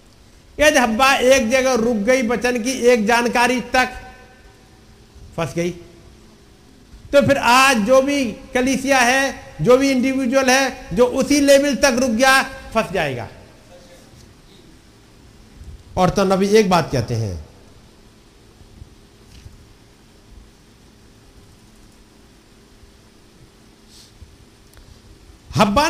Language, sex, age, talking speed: Hindi, male, 50-69, 95 wpm